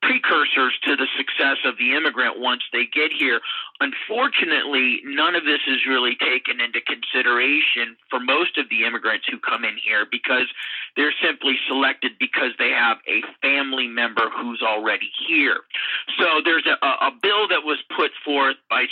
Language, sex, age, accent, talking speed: English, male, 40-59, American, 165 wpm